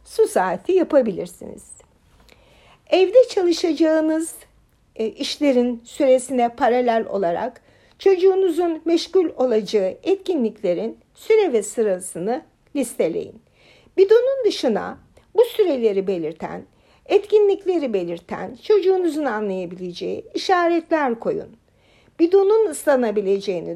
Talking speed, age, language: 75 wpm, 60-79, Turkish